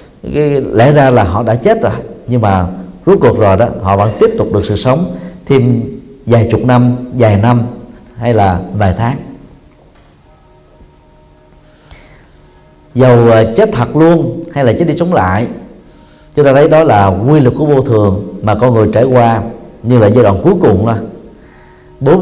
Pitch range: 100-135 Hz